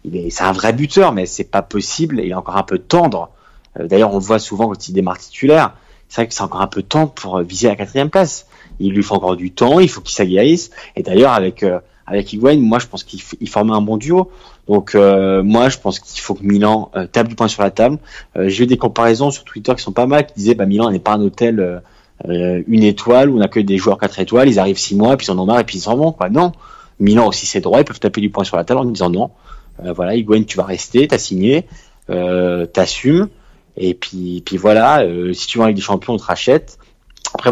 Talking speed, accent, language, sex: 265 wpm, French, French, male